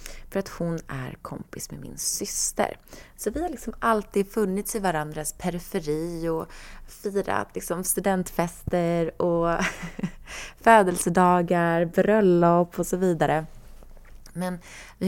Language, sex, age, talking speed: Swedish, female, 20-39, 105 wpm